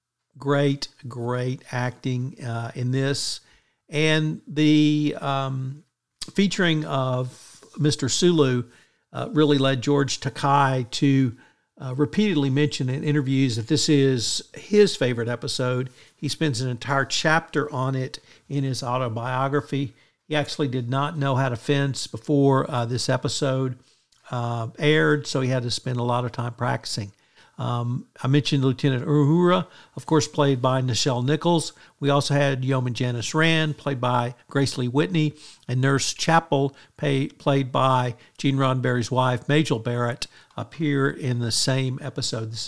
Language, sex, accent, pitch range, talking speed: English, male, American, 125-150 Hz, 140 wpm